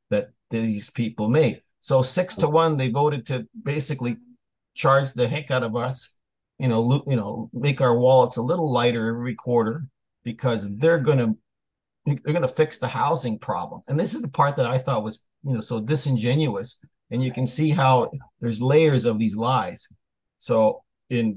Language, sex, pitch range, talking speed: English, male, 110-145 Hz, 185 wpm